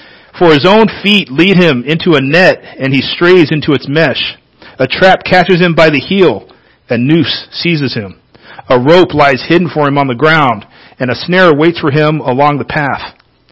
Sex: male